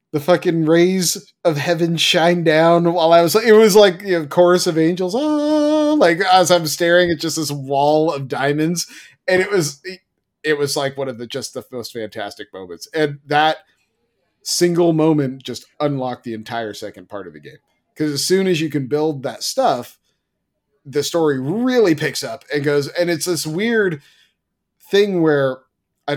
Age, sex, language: 30-49, male, English